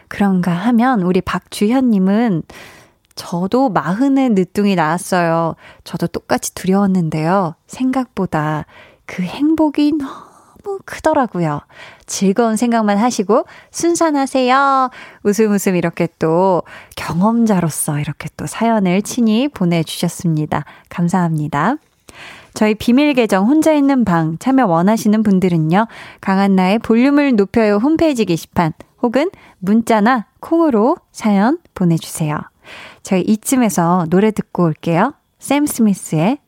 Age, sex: 20-39, female